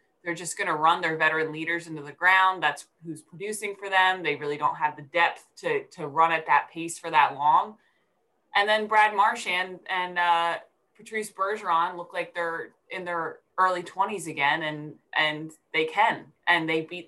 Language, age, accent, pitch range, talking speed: English, 20-39, American, 160-205 Hz, 195 wpm